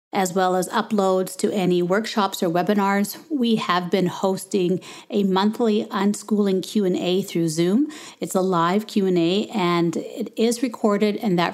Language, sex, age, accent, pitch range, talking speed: English, female, 40-59, American, 185-225 Hz, 150 wpm